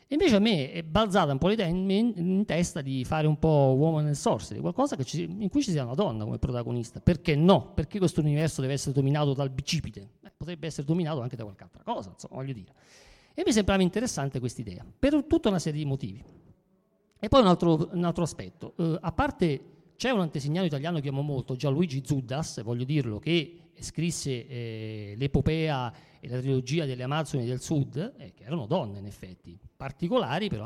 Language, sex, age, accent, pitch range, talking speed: Italian, male, 50-69, native, 135-195 Hz, 205 wpm